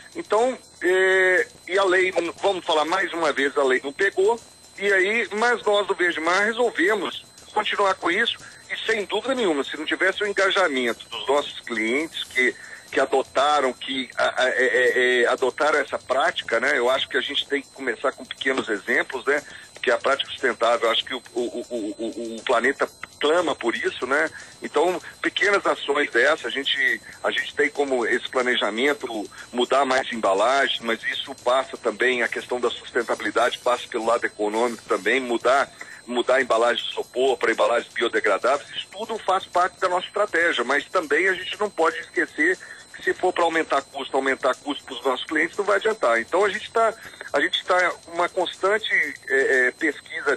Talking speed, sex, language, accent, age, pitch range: 180 wpm, male, Portuguese, Brazilian, 50-69, 140-215 Hz